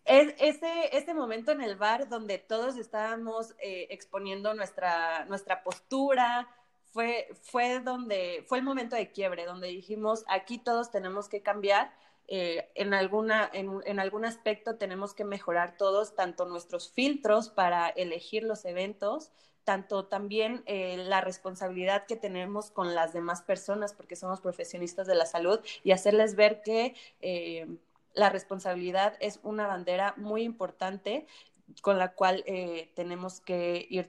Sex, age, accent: female, 20-39, Mexican